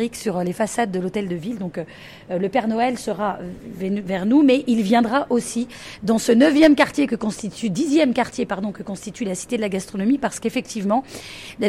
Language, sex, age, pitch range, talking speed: French, female, 30-49, 195-250 Hz, 205 wpm